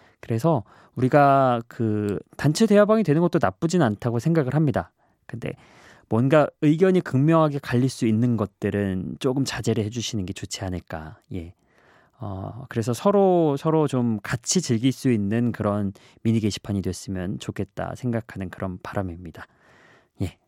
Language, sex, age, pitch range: Korean, male, 20-39, 105-145 Hz